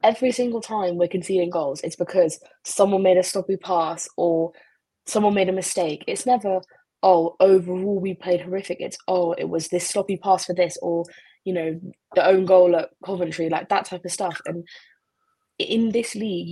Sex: female